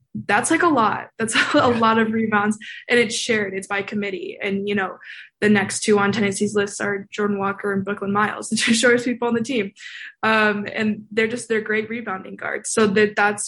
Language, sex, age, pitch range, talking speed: English, female, 20-39, 200-225 Hz, 215 wpm